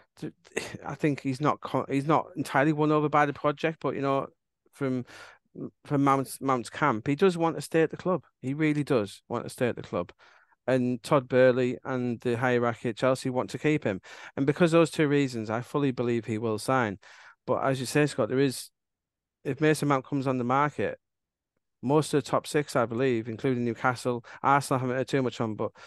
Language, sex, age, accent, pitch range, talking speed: English, male, 40-59, British, 120-150 Hz, 215 wpm